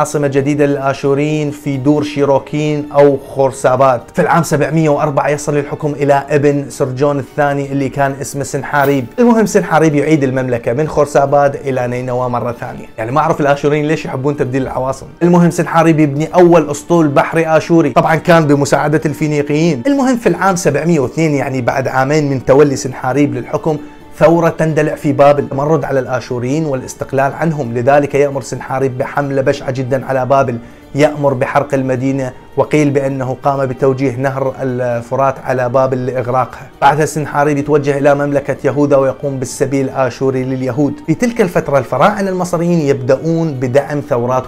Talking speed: 145 wpm